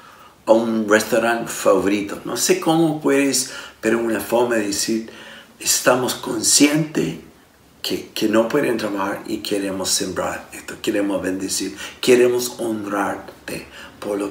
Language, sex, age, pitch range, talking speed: Spanish, male, 50-69, 95-135 Hz, 125 wpm